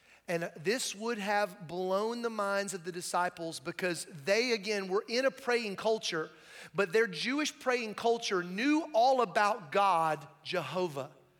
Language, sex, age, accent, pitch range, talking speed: English, male, 30-49, American, 185-250 Hz, 145 wpm